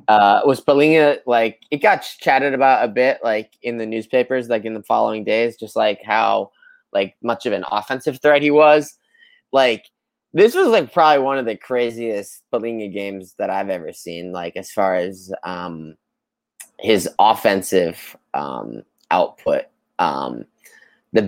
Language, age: English, 20-39